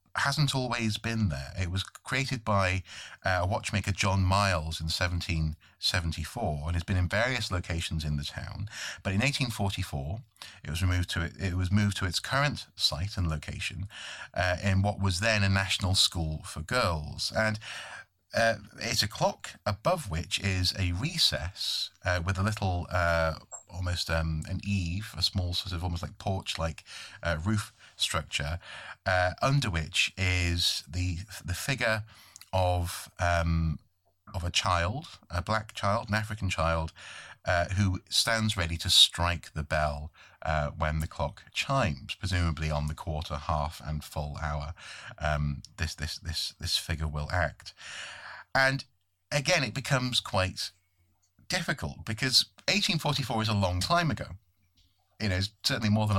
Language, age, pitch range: English, 30-49, 85-105 Hz